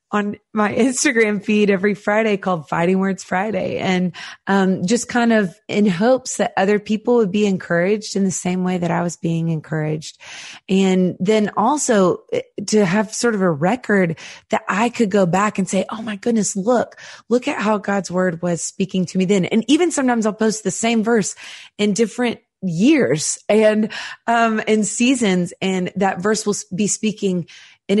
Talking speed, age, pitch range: 180 wpm, 20-39, 180-220 Hz